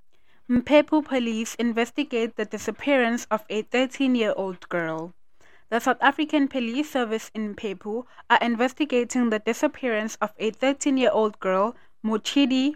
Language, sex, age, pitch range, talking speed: English, female, 20-39, 205-250 Hz, 120 wpm